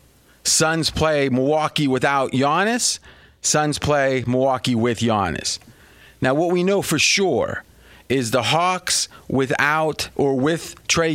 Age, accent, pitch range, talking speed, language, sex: 30-49, American, 125-150 Hz, 125 wpm, English, male